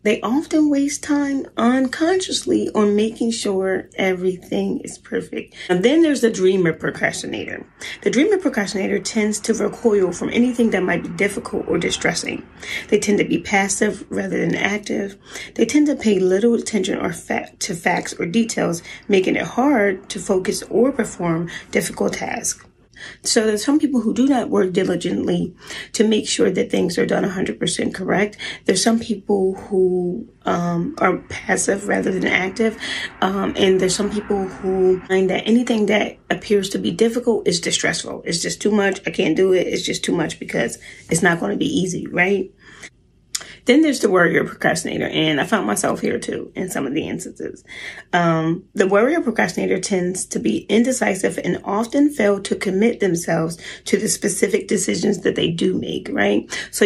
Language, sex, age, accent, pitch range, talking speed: English, female, 30-49, American, 185-235 Hz, 170 wpm